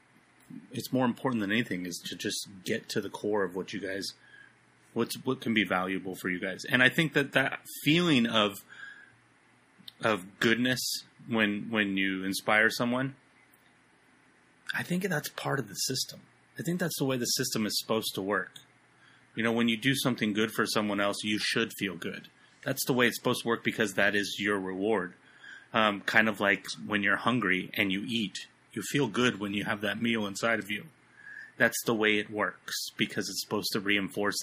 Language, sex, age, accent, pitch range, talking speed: English, male, 30-49, American, 100-125 Hz, 195 wpm